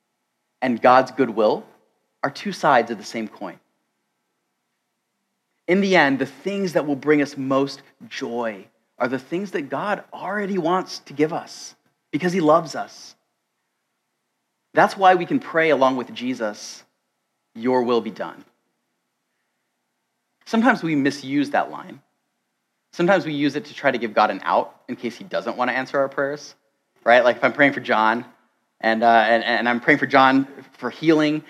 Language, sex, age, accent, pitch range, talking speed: English, male, 30-49, American, 125-190 Hz, 170 wpm